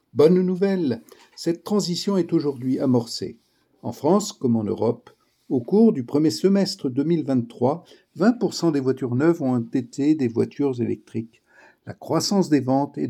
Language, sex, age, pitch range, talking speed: French, male, 50-69, 125-165 Hz, 140 wpm